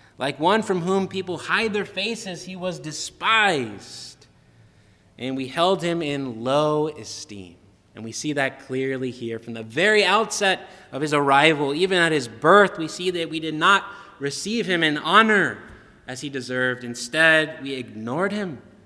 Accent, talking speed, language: American, 165 wpm, English